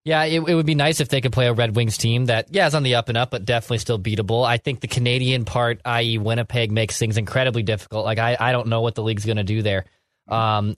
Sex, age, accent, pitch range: male, 20-39, American, 110-125 Hz